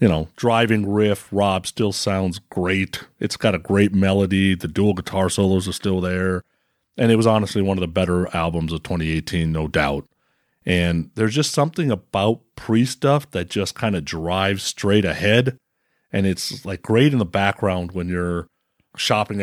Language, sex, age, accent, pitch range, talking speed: English, male, 40-59, American, 90-110 Hz, 175 wpm